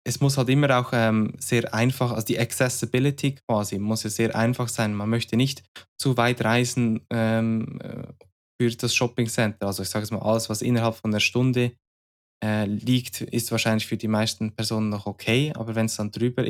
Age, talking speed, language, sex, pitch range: 20-39, 195 wpm, German, male, 110-130 Hz